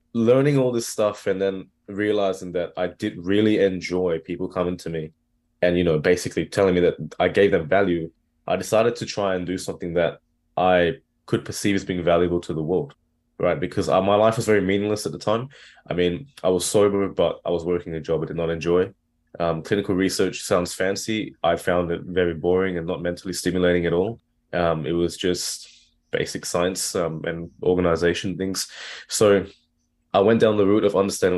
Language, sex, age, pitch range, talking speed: English, male, 20-39, 85-100 Hz, 195 wpm